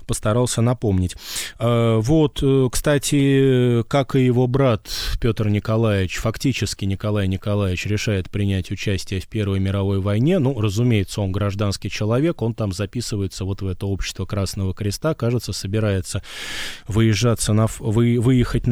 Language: Russian